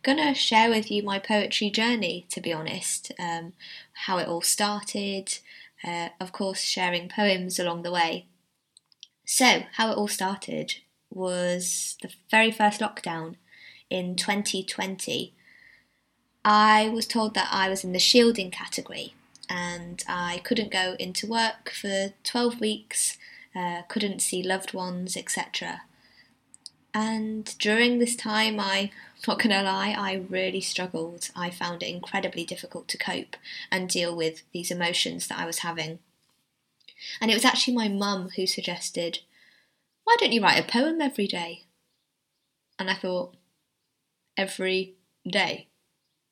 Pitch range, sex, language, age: 180-220 Hz, female, English, 20-39